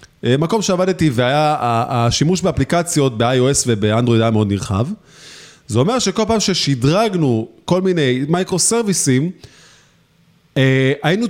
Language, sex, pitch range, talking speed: Hebrew, male, 130-185 Hz, 100 wpm